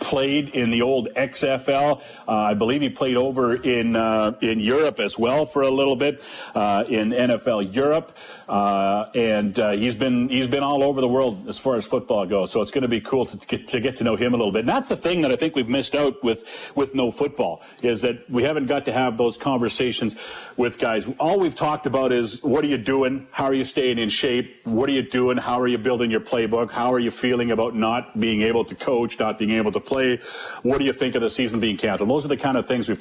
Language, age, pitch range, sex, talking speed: English, 50-69, 115-140 Hz, male, 255 wpm